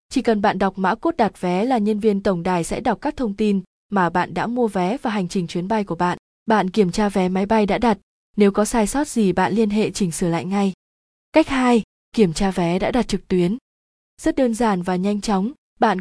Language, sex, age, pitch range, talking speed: Vietnamese, female, 20-39, 190-230 Hz, 245 wpm